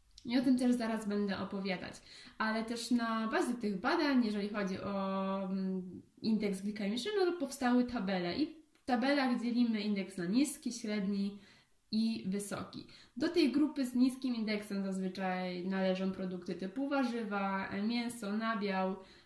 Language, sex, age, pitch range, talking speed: Polish, female, 20-39, 200-245 Hz, 135 wpm